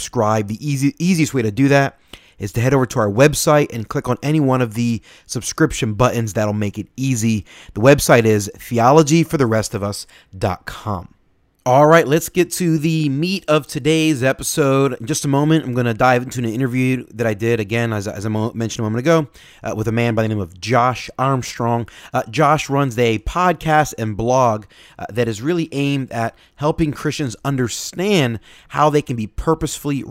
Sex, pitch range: male, 110-145 Hz